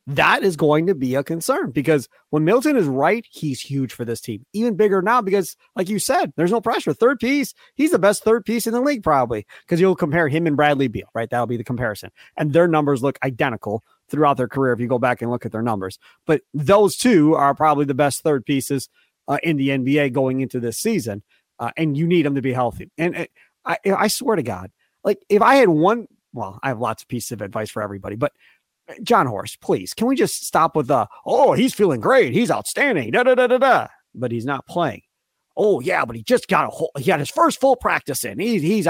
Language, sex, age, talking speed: English, male, 30-49, 240 wpm